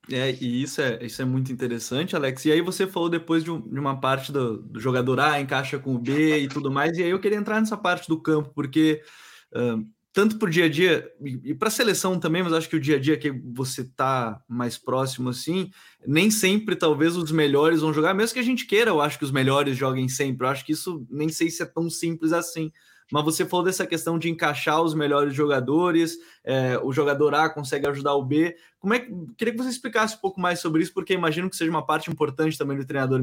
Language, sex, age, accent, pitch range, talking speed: Portuguese, male, 20-39, Brazilian, 135-165 Hz, 240 wpm